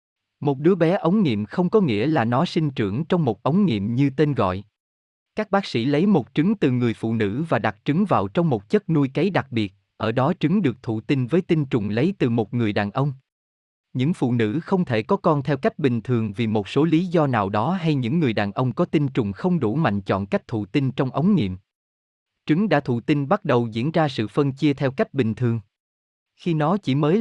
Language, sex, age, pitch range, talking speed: Vietnamese, male, 20-39, 110-160 Hz, 245 wpm